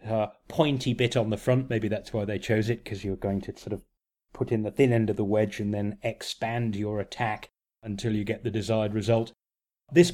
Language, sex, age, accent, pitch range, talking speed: English, male, 30-49, British, 110-125 Hz, 220 wpm